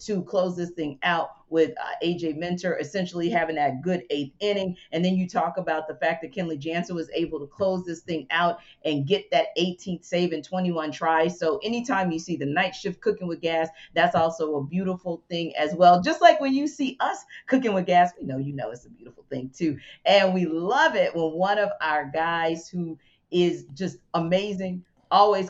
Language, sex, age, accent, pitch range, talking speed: English, female, 40-59, American, 160-195 Hz, 210 wpm